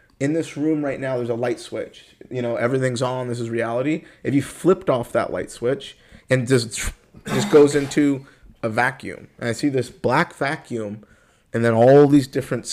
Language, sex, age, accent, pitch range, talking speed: English, male, 30-49, American, 120-145 Hz, 200 wpm